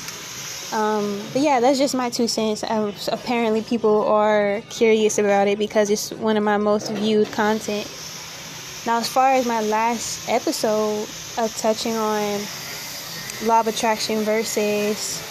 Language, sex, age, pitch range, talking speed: English, female, 10-29, 200-230 Hz, 140 wpm